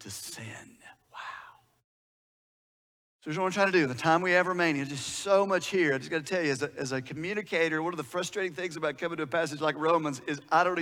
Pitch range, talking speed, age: 125-160 Hz, 250 wpm, 50-69